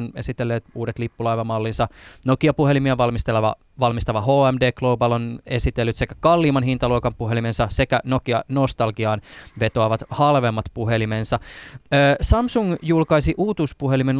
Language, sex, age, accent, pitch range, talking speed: Finnish, male, 20-39, native, 115-140 Hz, 95 wpm